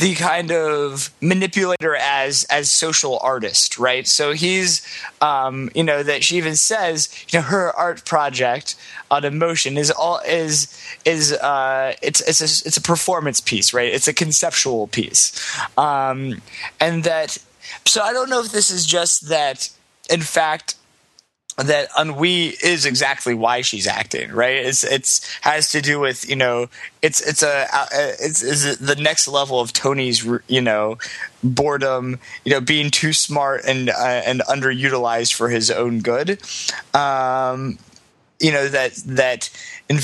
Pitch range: 125-155 Hz